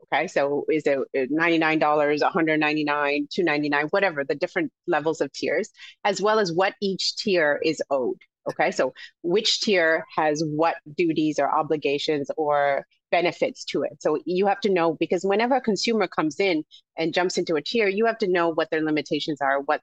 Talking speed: 180 wpm